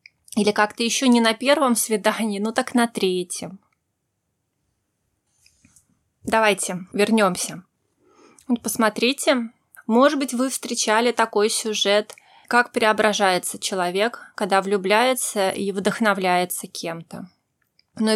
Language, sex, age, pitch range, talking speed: Russian, female, 20-39, 195-235 Hz, 100 wpm